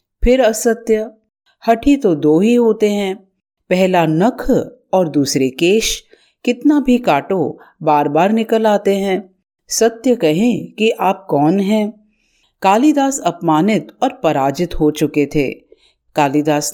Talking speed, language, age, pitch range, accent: 120 wpm, Hindi, 50-69, 155-230 Hz, native